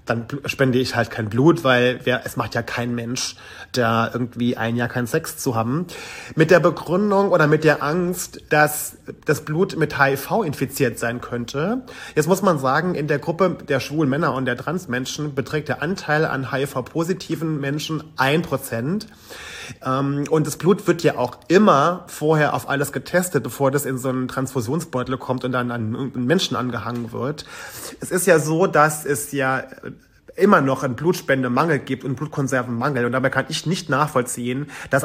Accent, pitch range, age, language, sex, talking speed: German, 130-160 Hz, 30-49, German, male, 175 wpm